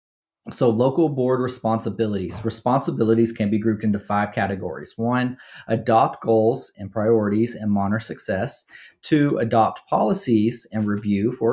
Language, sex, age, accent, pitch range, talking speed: English, male, 30-49, American, 110-135 Hz, 130 wpm